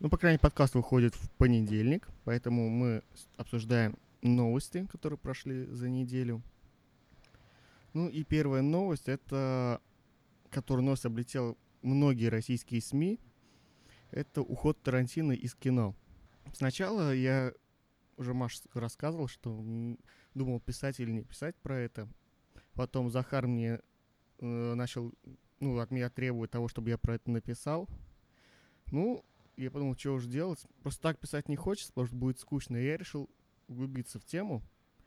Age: 20-39